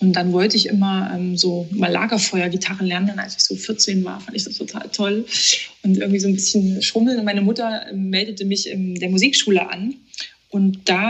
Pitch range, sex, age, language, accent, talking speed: 185-215 Hz, female, 20-39, German, German, 210 wpm